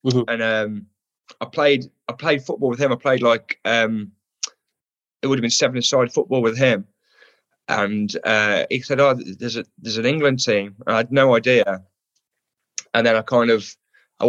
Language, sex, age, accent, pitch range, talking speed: English, male, 20-39, British, 110-145 Hz, 190 wpm